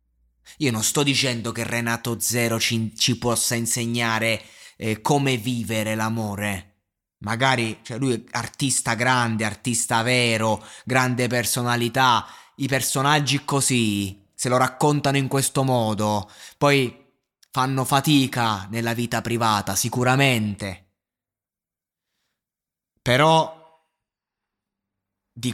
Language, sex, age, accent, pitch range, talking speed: Italian, male, 20-39, native, 100-125 Hz, 100 wpm